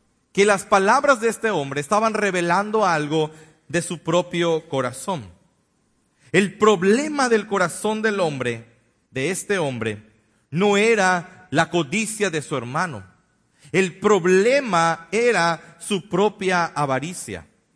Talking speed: 120 wpm